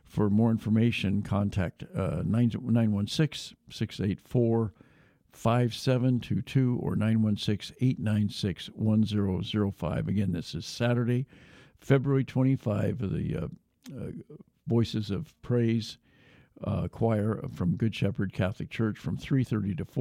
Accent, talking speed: American, 95 wpm